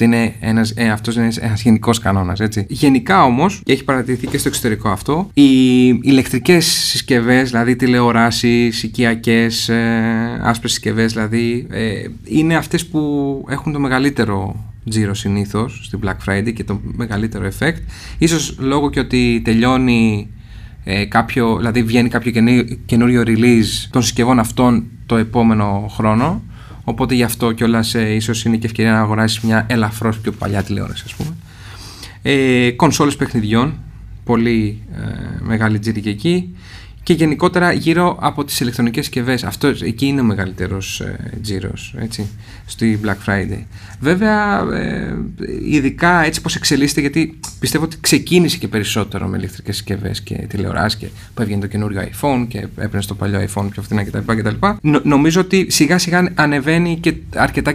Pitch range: 105-135 Hz